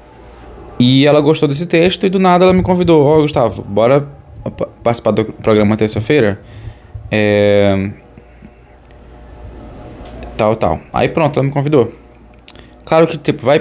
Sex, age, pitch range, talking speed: male, 10-29, 105-140 Hz, 140 wpm